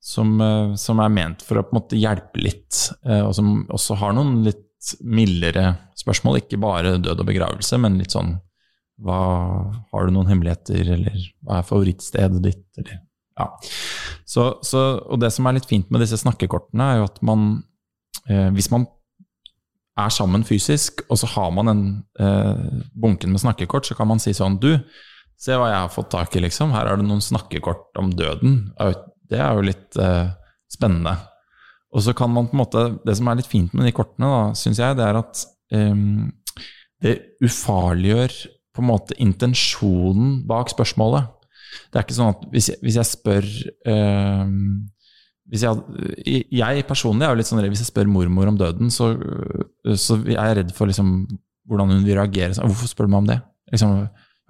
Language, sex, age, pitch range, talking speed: English, male, 20-39, 95-115 Hz, 190 wpm